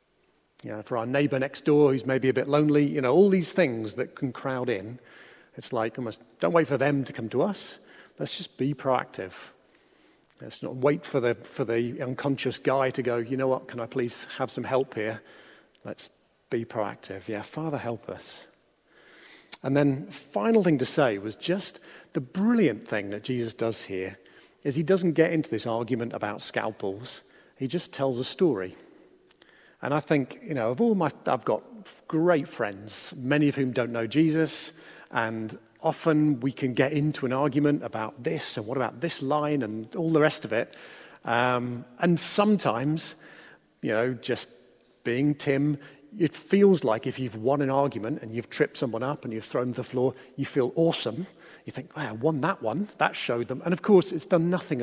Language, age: English, 40-59